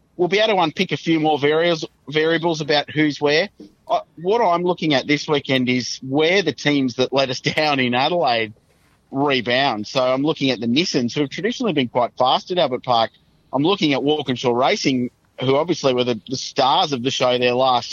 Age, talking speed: 30-49, 200 wpm